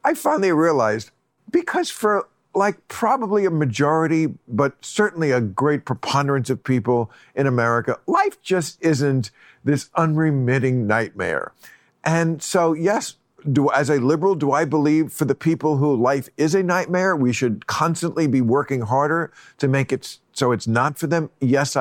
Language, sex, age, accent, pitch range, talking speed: English, male, 50-69, American, 130-165 Hz, 155 wpm